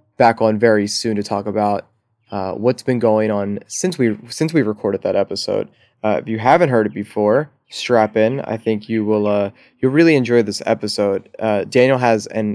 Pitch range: 105-115 Hz